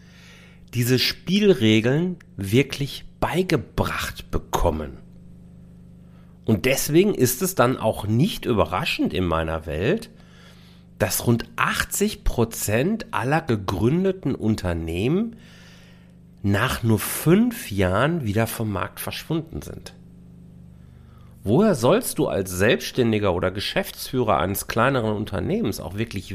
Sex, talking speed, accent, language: male, 100 wpm, German, German